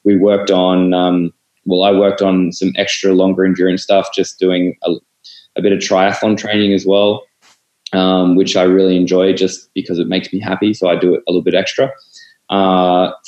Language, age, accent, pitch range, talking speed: English, 20-39, Australian, 90-95 Hz, 195 wpm